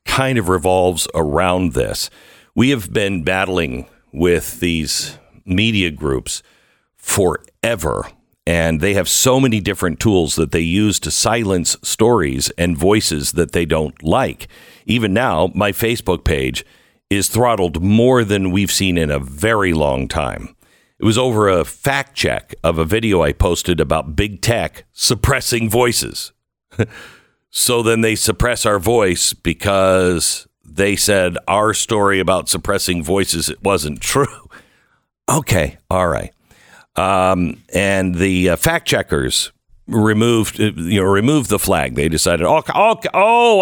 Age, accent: 50-69, American